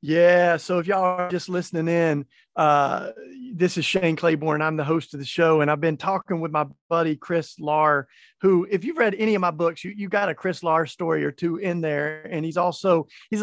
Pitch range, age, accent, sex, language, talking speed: 155-190 Hz, 40-59, American, male, English, 230 wpm